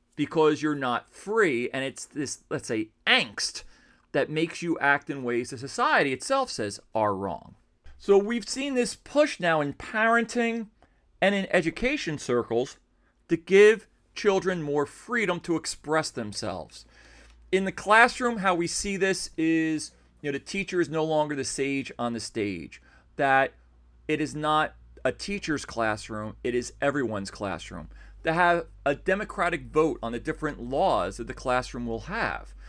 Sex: male